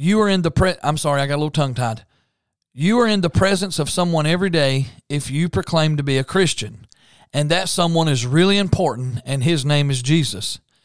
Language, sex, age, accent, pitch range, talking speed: English, male, 40-59, American, 140-185 Hz, 215 wpm